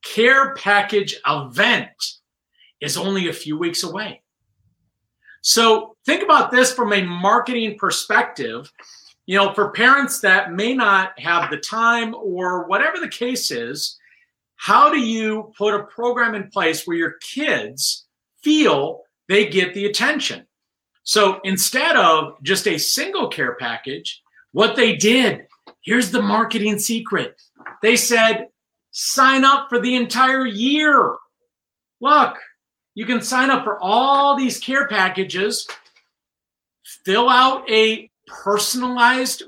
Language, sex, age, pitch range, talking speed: English, male, 40-59, 195-250 Hz, 130 wpm